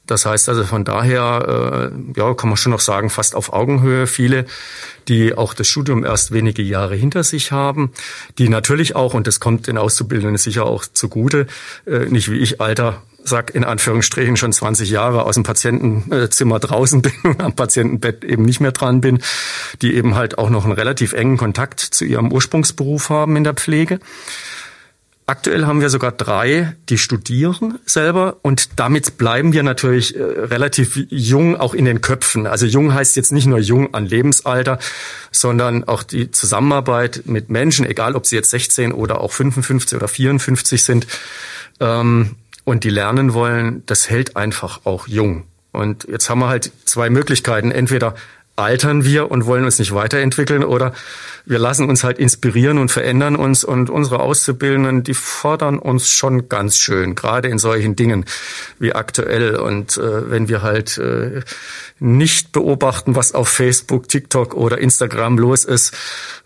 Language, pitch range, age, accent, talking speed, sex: German, 115-135 Hz, 50-69, German, 165 wpm, male